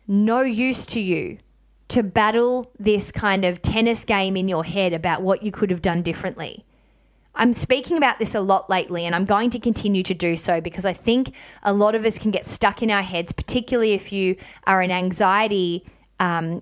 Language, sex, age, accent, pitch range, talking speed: English, female, 20-39, Australian, 185-235 Hz, 200 wpm